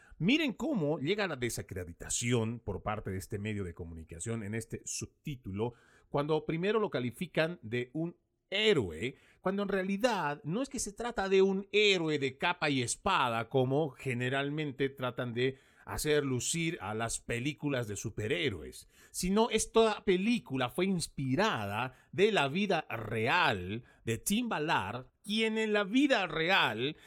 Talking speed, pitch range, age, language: 145 wpm, 115-185 Hz, 40-59, Spanish